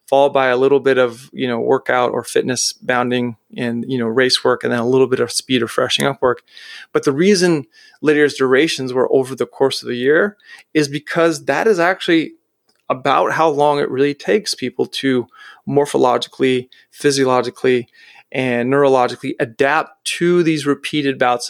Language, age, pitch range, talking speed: English, 30-49, 130-175 Hz, 175 wpm